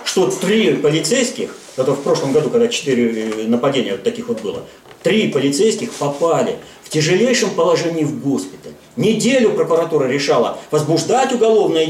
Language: Russian